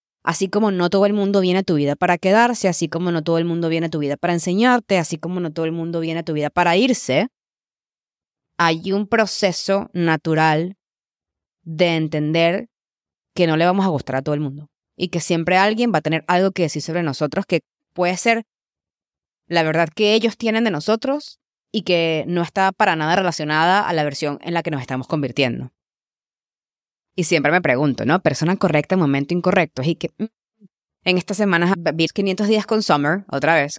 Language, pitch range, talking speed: English, 150-185 Hz, 200 wpm